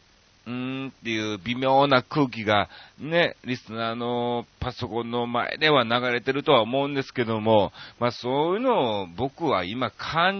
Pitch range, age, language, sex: 100-150 Hz, 40-59, Japanese, male